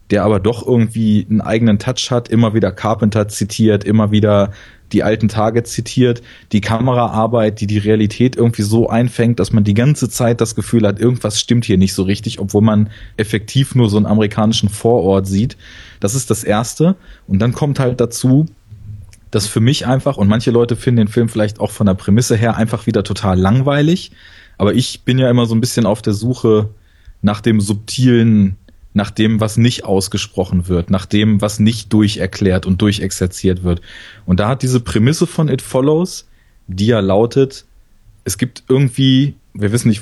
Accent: German